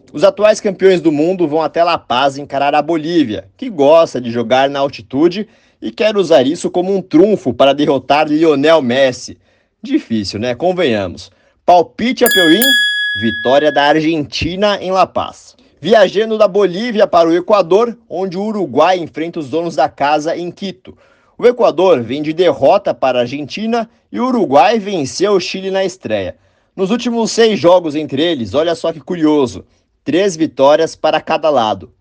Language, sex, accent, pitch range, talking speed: Portuguese, male, Brazilian, 150-200 Hz, 165 wpm